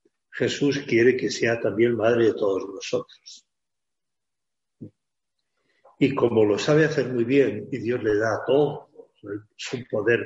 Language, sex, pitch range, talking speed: Spanish, male, 115-175 Hz, 135 wpm